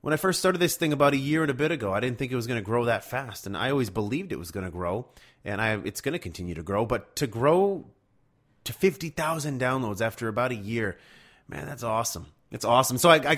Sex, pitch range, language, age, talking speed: male, 110-150 Hz, English, 30-49, 250 wpm